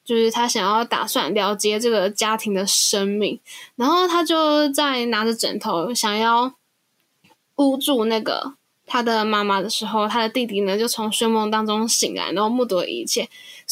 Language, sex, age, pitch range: Chinese, female, 10-29, 215-260 Hz